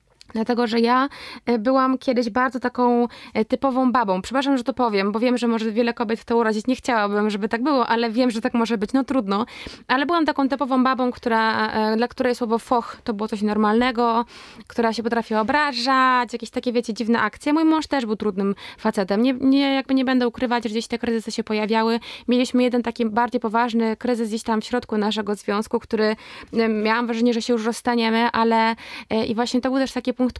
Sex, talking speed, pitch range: female, 205 wpm, 225-255 Hz